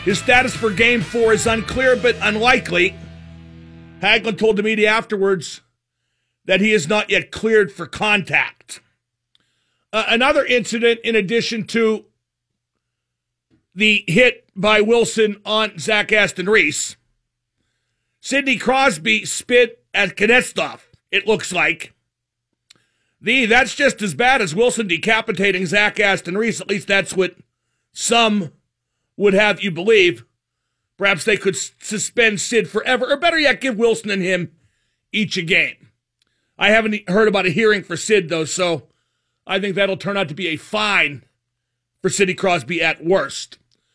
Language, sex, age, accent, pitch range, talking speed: English, male, 50-69, American, 145-220 Hz, 140 wpm